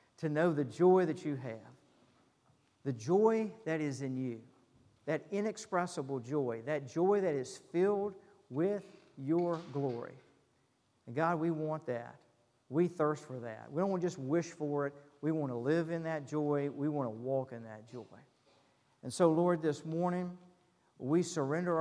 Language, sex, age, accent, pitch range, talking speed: English, male, 50-69, American, 135-165 Hz, 170 wpm